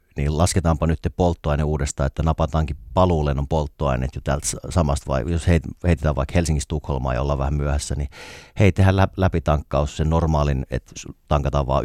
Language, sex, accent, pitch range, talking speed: Finnish, male, native, 75-85 Hz, 160 wpm